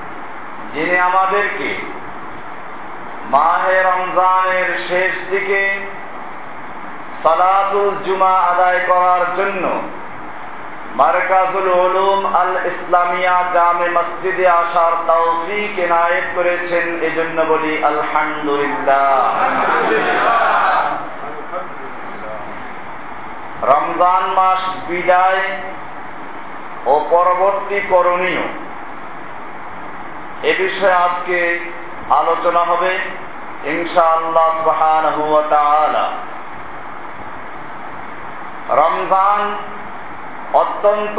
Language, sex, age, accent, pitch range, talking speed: Bengali, male, 50-69, native, 170-190 Hz, 40 wpm